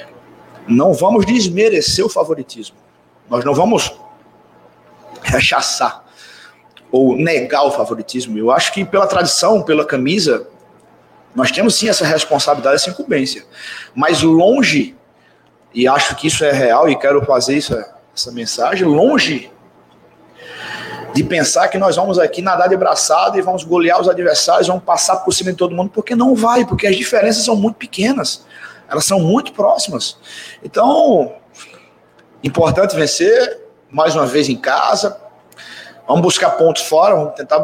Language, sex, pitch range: Portuguese, male, 140-205 Hz